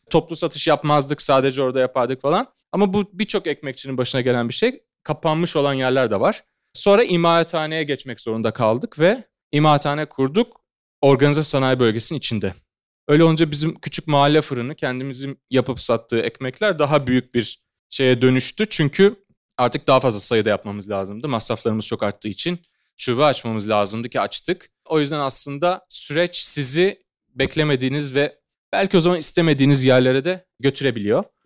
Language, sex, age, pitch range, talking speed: Turkish, male, 30-49, 120-155 Hz, 145 wpm